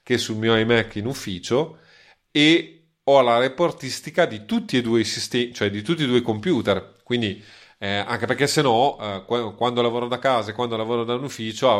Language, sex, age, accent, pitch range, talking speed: Italian, male, 30-49, native, 105-125 Hz, 205 wpm